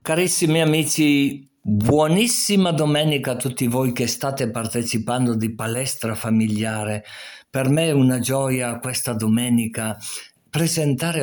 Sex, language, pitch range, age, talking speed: male, Italian, 110-145 Hz, 50-69, 110 wpm